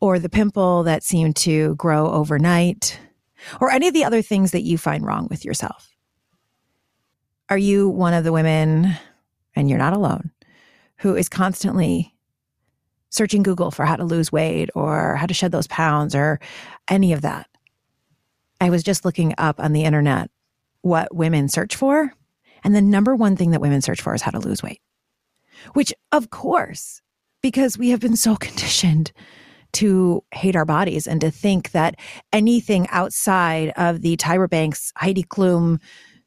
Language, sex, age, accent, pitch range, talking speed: English, female, 30-49, American, 160-195 Hz, 165 wpm